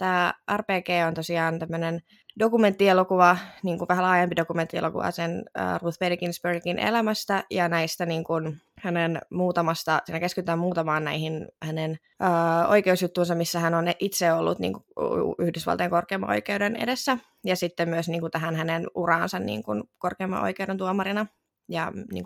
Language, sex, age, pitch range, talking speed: Finnish, female, 20-39, 165-190 Hz, 140 wpm